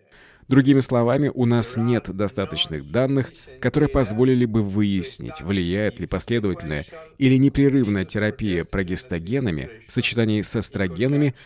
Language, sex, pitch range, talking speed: English, male, 95-130 Hz, 115 wpm